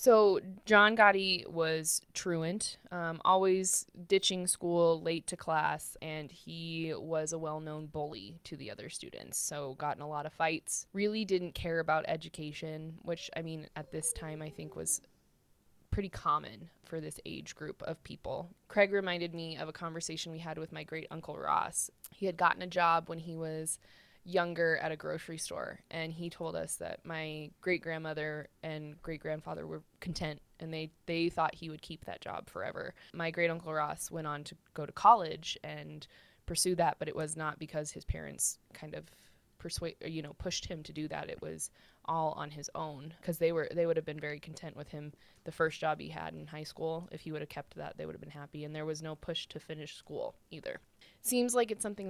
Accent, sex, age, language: American, female, 20-39, English